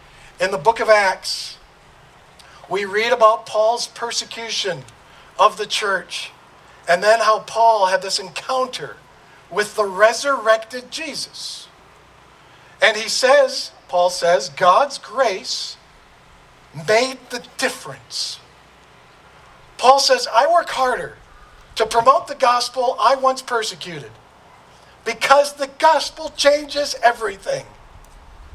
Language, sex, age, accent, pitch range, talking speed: English, male, 50-69, American, 185-265 Hz, 105 wpm